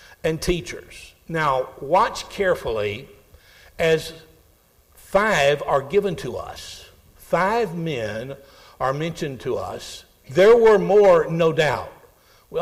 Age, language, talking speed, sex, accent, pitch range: 60-79, English, 110 wpm, male, American, 140-200 Hz